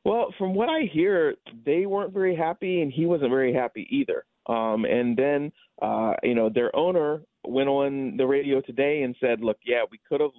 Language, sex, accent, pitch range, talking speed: English, male, American, 110-135 Hz, 200 wpm